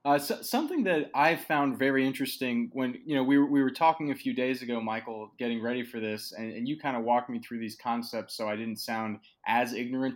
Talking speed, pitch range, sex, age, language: 230 wpm, 120-145 Hz, male, 20-39, English